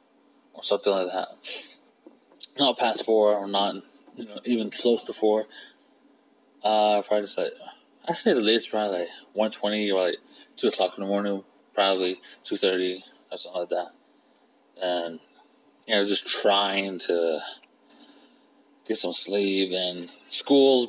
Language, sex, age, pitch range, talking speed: English, male, 20-39, 100-130 Hz, 160 wpm